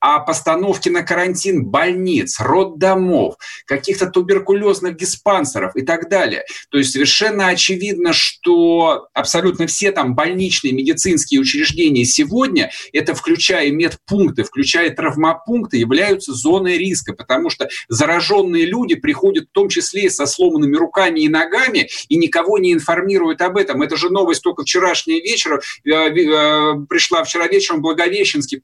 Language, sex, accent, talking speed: Russian, male, native, 130 wpm